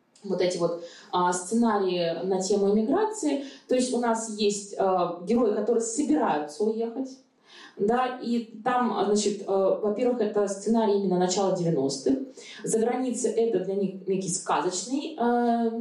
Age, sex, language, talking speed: 20-39, female, Russian, 145 wpm